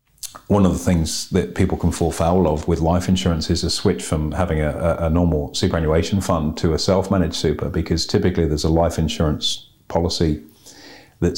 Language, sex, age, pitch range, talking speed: English, male, 40-59, 80-90 Hz, 185 wpm